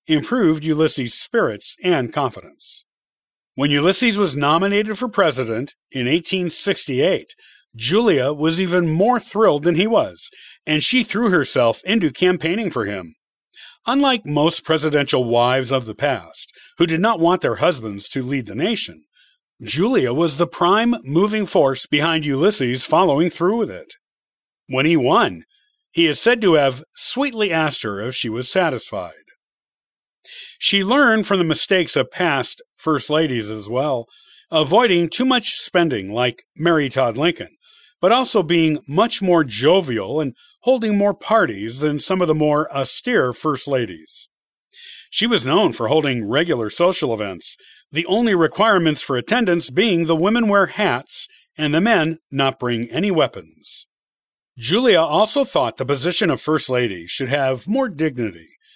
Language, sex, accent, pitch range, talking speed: English, male, American, 140-205 Hz, 150 wpm